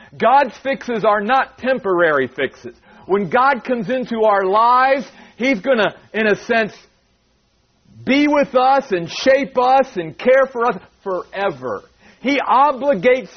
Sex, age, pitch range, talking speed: male, 50-69, 185-250 Hz, 140 wpm